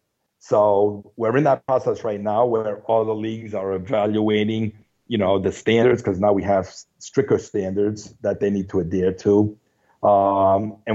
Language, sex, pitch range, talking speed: English, male, 100-115 Hz, 170 wpm